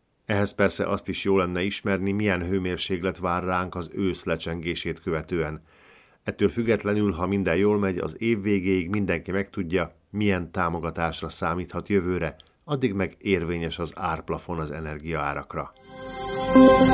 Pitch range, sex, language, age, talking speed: 85-100 Hz, male, Hungarian, 50-69, 130 wpm